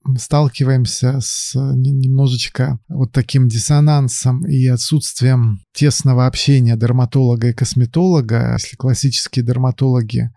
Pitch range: 125-140 Hz